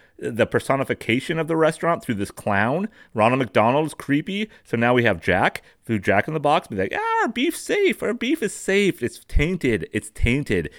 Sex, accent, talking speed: male, American, 195 wpm